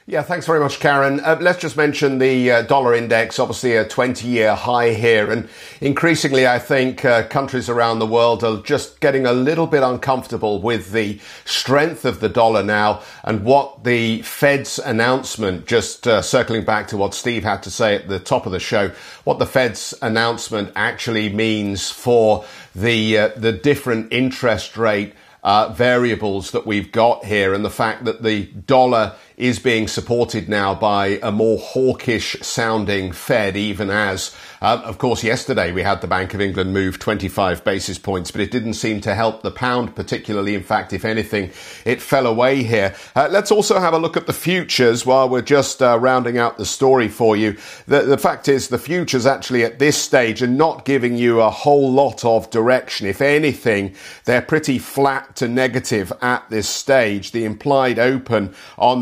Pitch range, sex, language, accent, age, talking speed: 105-130 Hz, male, English, British, 50-69, 185 wpm